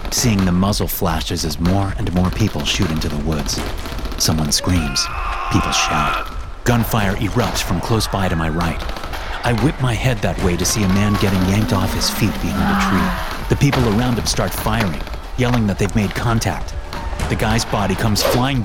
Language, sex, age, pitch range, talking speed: English, male, 30-49, 90-115 Hz, 190 wpm